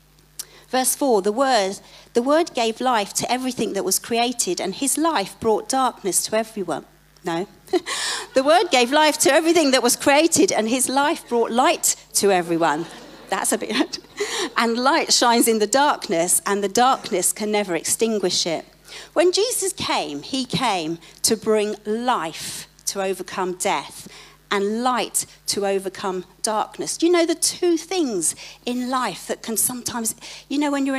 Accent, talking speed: British, 160 wpm